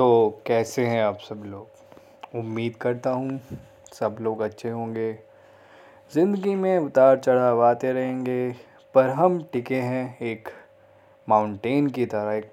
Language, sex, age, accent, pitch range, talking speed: Hindi, male, 20-39, native, 110-140 Hz, 135 wpm